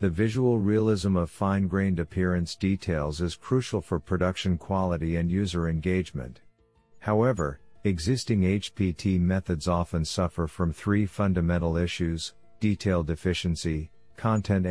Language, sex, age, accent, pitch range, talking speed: English, male, 50-69, American, 85-105 Hz, 115 wpm